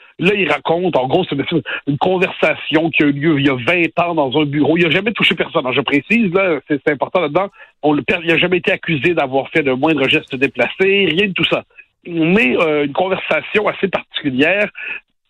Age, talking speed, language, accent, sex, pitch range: 60-79, 220 wpm, French, French, male, 135-180 Hz